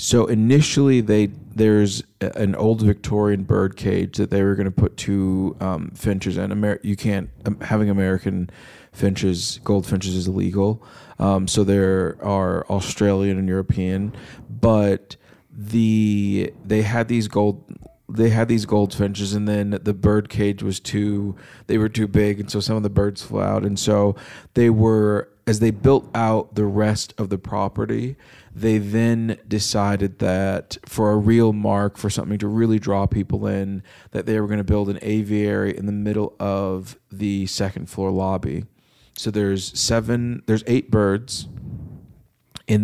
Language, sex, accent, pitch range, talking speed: English, male, American, 100-110 Hz, 165 wpm